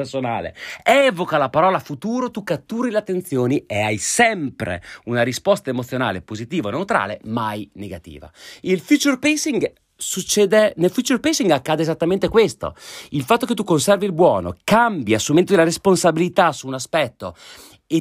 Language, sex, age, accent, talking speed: Italian, male, 30-49, native, 150 wpm